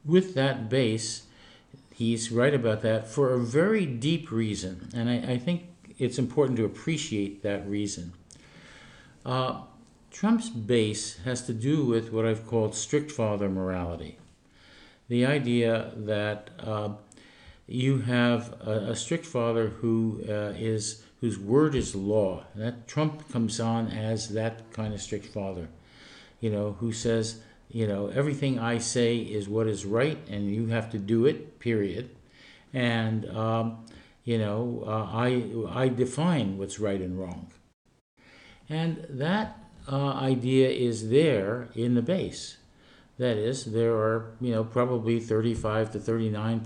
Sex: male